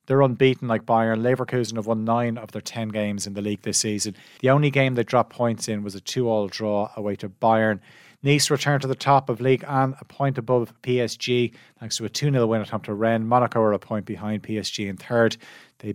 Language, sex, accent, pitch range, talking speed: English, male, Irish, 105-130 Hz, 235 wpm